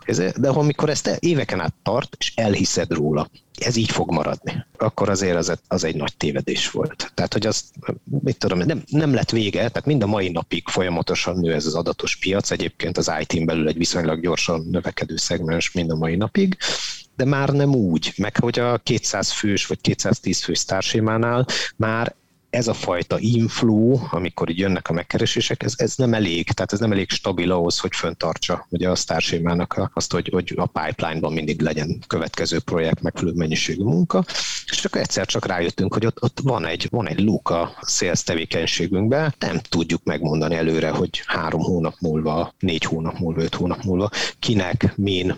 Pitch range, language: 85-115 Hz, Hungarian